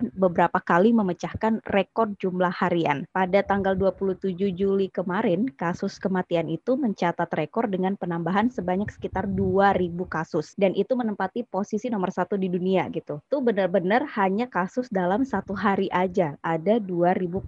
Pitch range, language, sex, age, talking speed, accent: 175-210 Hz, Indonesian, female, 20-39, 140 wpm, native